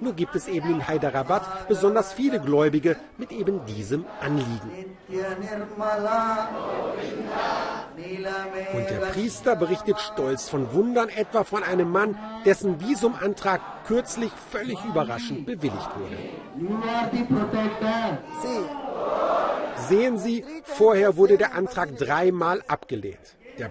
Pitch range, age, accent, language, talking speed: 150-220 Hz, 50-69, German, German, 100 wpm